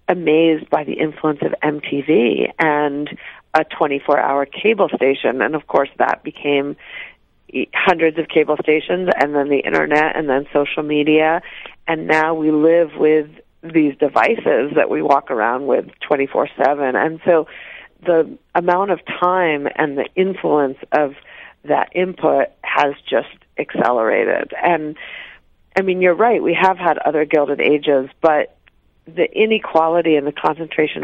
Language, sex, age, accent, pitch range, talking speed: English, female, 40-59, American, 150-180 Hz, 140 wpm